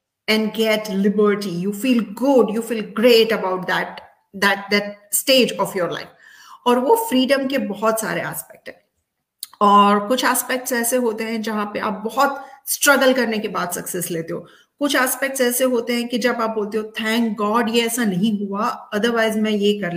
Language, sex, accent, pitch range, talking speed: Hindi, female, native, 205-255 Hz, 185 wpm